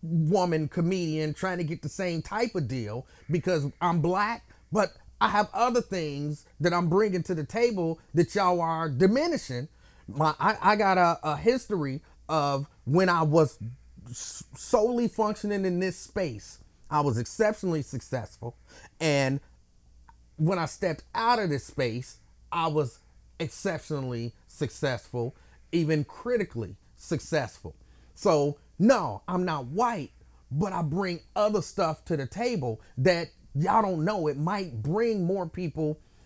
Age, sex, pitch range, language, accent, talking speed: 30-49, male, 140-190 Hz, English, American, 140 wpm